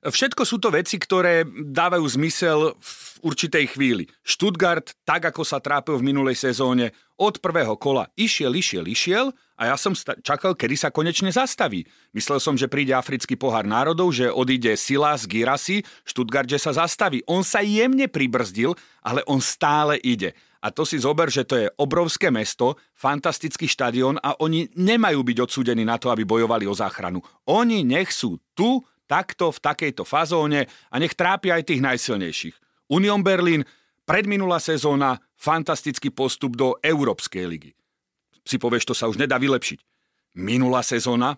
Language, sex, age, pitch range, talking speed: Slovak, male, 40-59, 125-165 Hz, 160 wpm